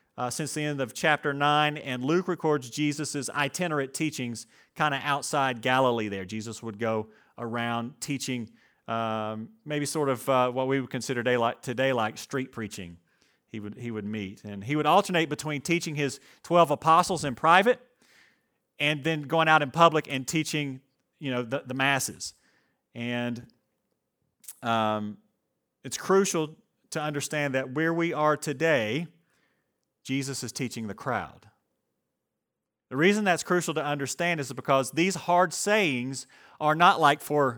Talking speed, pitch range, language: 155 wpm, 120-155 Hz, English